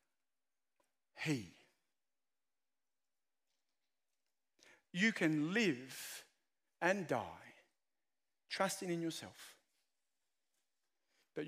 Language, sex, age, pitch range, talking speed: English, male, 50-69, 150-195 Hz, 50 wpm